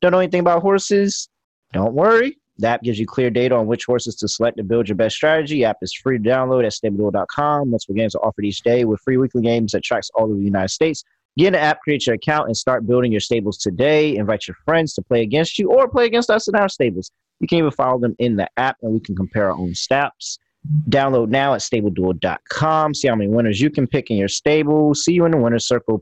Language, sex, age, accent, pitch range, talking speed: English, male, 30-49, American, 110-150 Hz, 255 wpm